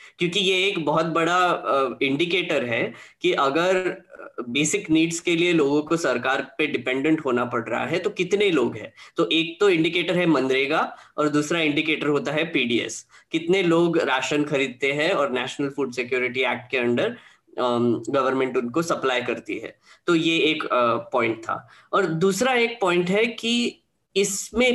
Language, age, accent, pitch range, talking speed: Hindi, 20-39, native, 140-185 Hz, 160 wpm